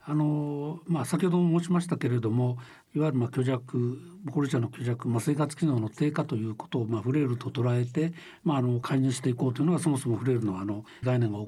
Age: 60-79